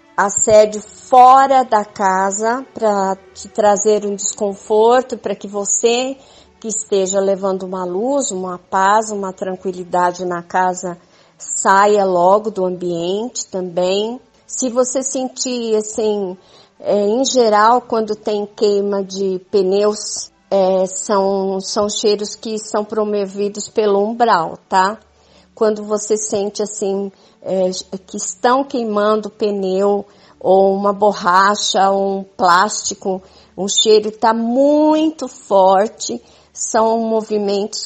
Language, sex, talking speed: Portuguese, female, 115 wpm